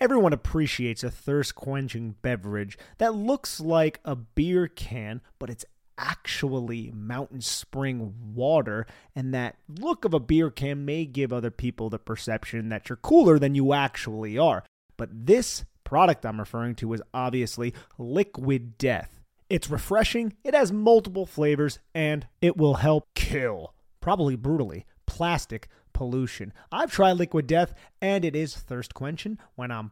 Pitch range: 120-165 Hz